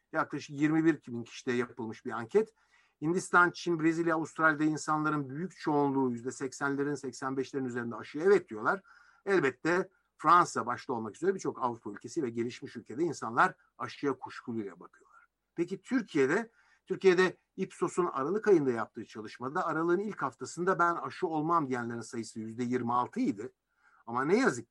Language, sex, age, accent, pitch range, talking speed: Turkish, male, 60-79, native, 125-180 Hz, 140 wpm